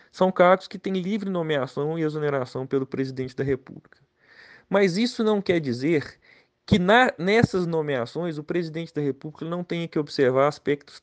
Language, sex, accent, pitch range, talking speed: Portuguese, male, Brazilian, 130-165 Hz, 160 wpm